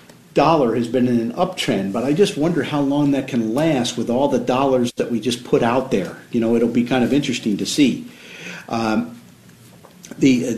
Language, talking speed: English, 205 wpm